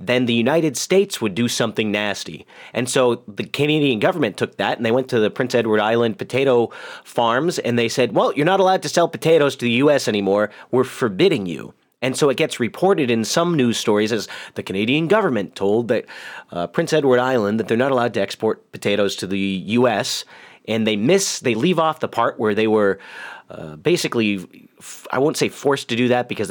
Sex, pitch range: male, 105-135 Hz